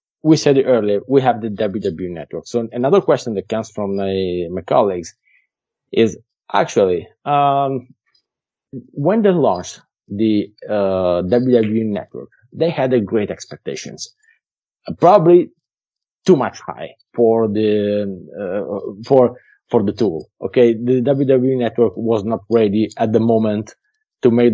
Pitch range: 105-130 Hz